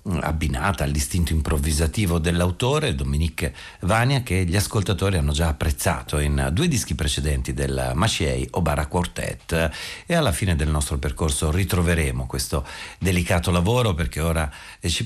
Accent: native